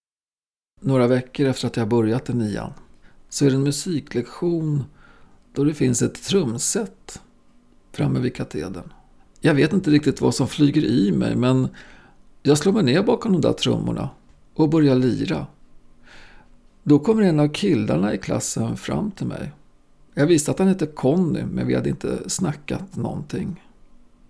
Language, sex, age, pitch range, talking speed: Swedish, male, 40-59, 130-170 Hz, 160 wpm